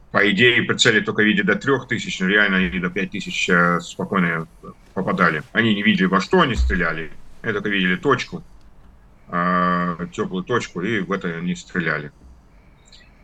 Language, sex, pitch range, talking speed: Russian, male, 90-115 Hz, 150 wpm